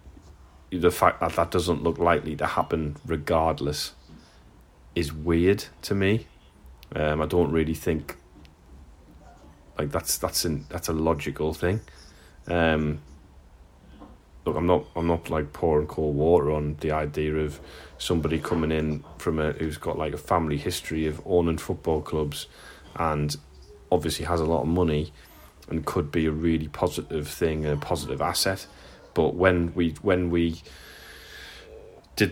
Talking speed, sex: 150 wpm, male